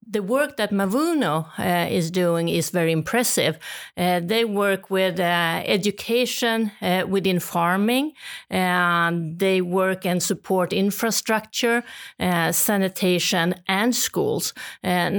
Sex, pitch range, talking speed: female, 175-215 Hz, 120 wpm